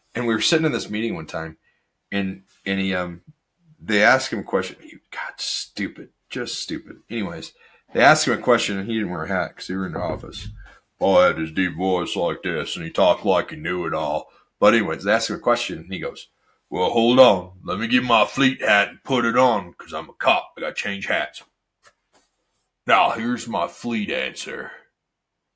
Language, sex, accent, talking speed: English, male, American, 215 wpm